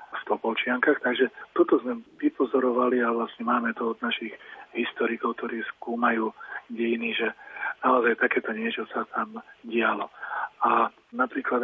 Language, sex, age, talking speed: Slovak, male, 40-59, 130 wpm